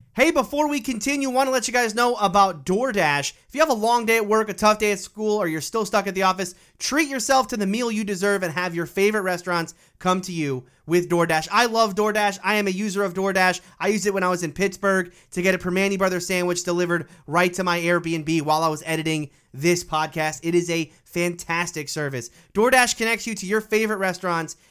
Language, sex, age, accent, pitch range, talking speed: English, male, 30-49, American, 175-230 Hz, 235 wpm